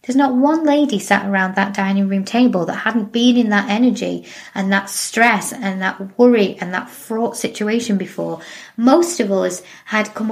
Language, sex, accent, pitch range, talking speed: English, female, British, 195-245 Hz, 185 wpm